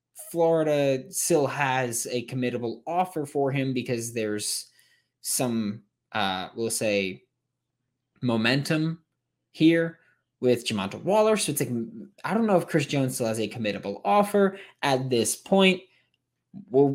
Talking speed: 130 wpm